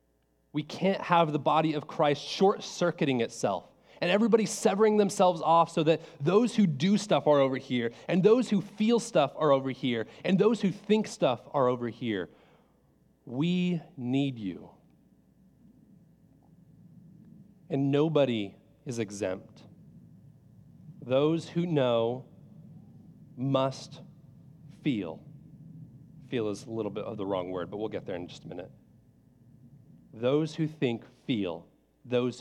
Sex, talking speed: male, 135 wpm